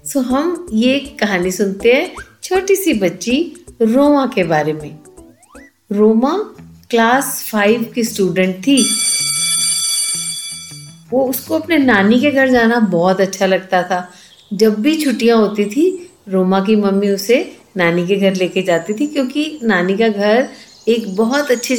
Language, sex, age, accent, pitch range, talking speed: Hindi, female, 50-69, native, 190-245 Hz, 145 wpm